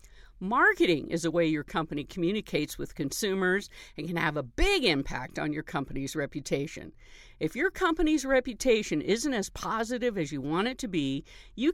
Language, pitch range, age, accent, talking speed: English, 150-250 Hz, 50-69, American, 170 wpm